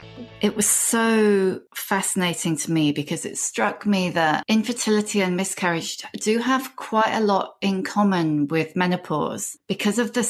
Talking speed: 150 wpm